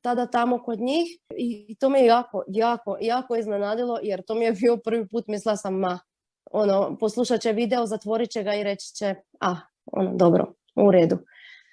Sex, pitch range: female, 220-290 Hz